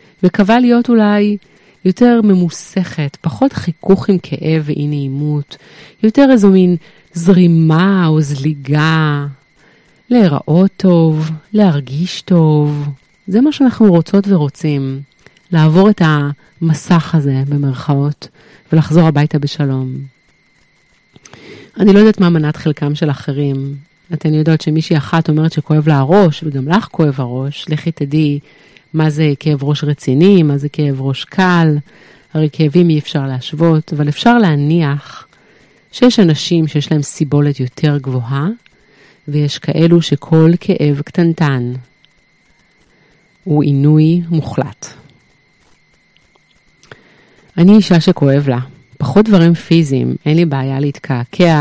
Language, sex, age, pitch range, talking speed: Hebrew, female, 30-49, 145-175 Hz, 115 wpm